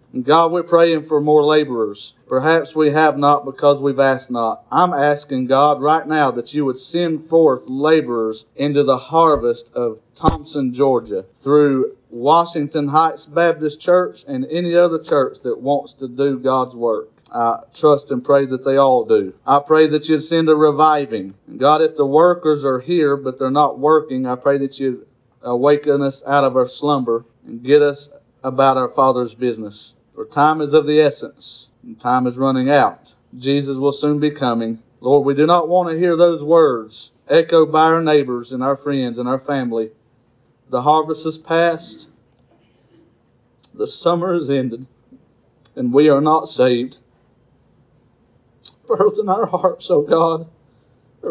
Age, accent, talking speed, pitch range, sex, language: 40-59, American, 170 wpm, 130-160 Hz, male, English